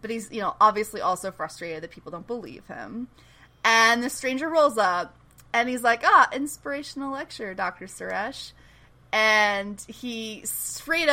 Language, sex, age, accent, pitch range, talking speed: English, female, 20-39, American, 195-250 Hz, 150 wpm